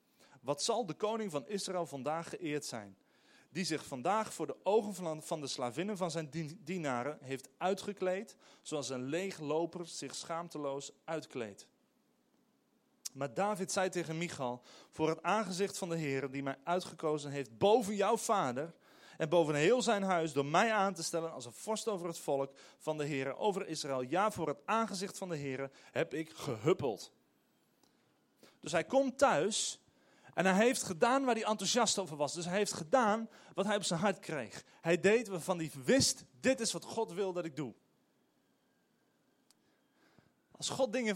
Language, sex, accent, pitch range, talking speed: Dutch, male, Dutch, 150-205 Hz, 170 wpm